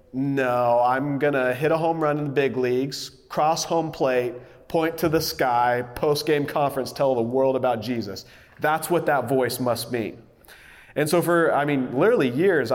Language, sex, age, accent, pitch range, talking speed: English, male, 30-49, American, 130-170 Hz, 185 wpm